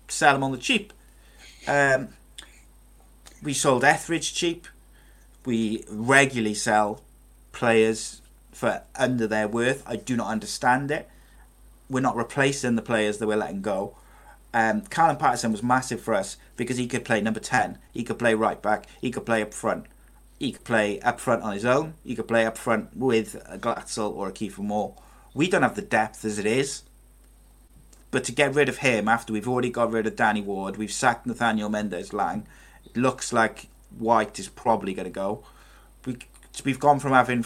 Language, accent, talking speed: English, British, 185 wpm